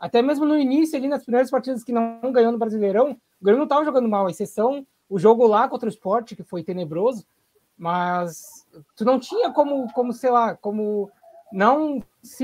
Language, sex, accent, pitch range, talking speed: Portuguese, male, Brazilian, 210-285 Hz, 200 wpm